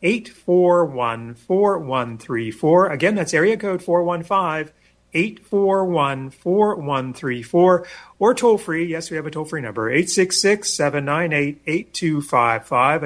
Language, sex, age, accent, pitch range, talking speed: English, male, 40-59, American, 135-180 Hz, 65 wpm